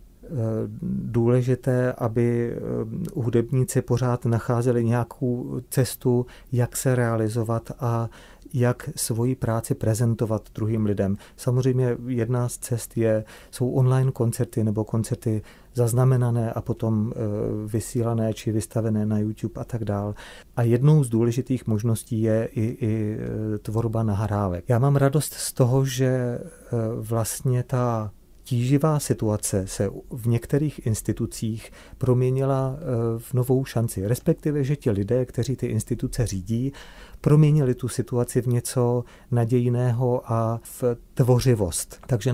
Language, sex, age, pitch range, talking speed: Czech, male, 40-59, 110-125 Hz, 120 wpm